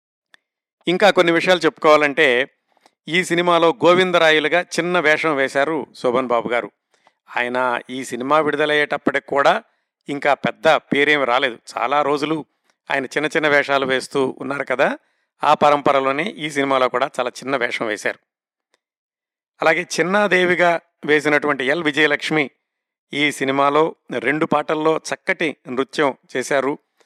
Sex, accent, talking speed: male, native, 115 wpm